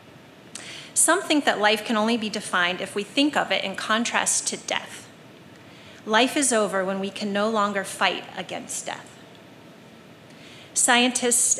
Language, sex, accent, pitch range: English, female, American, 195-265 Hz